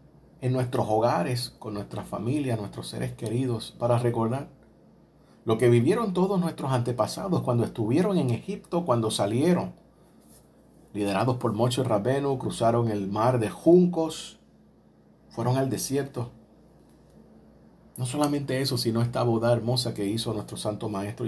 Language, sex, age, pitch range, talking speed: Spanish, male, 50-69, 110-135 Hz, 135 wpm